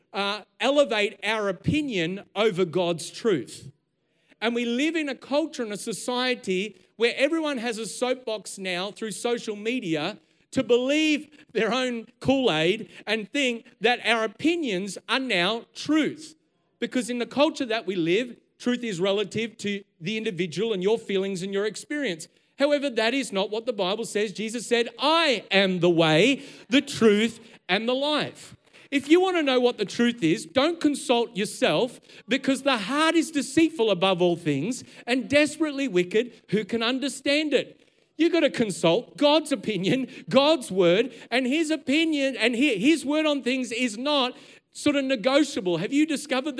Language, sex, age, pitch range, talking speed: English, male, 40-59, 210-275 Hz, 165 wpm